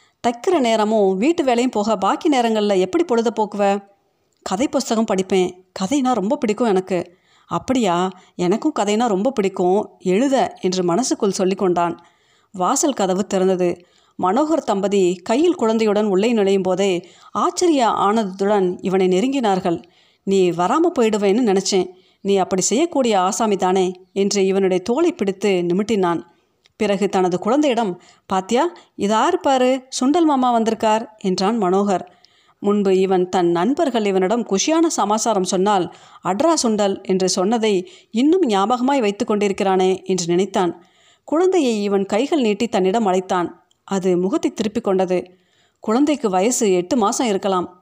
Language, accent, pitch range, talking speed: Tamil, native, 185-235 Hz, 125 wpm